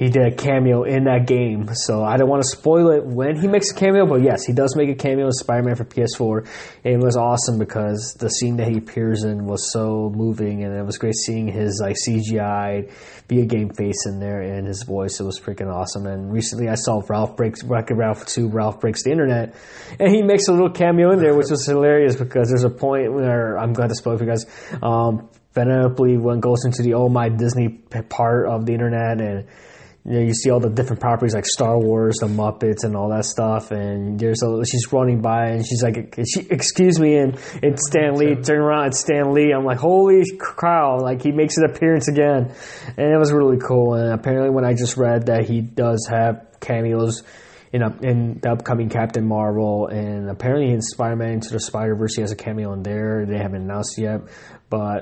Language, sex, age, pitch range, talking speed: English, male, 20-39, 110-130 Hz, 225 wpm